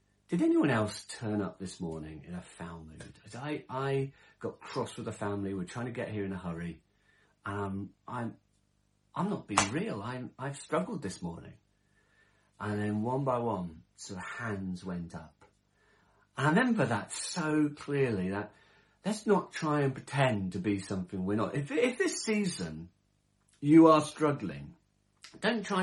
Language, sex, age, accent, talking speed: English, male, 40-59, British, 175 wpm